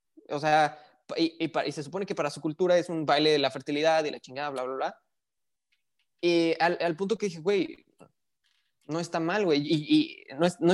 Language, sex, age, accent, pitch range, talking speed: Spanish, male, 20-39, Mexican, 145-180 Hz, 220 wpm